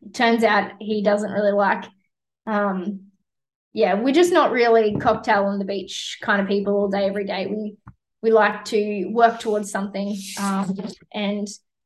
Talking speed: 160 wpm